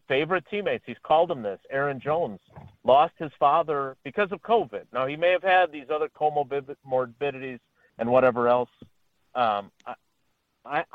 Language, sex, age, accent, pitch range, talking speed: English, male, 50-69, American, 120-160 Hz, 150 wpm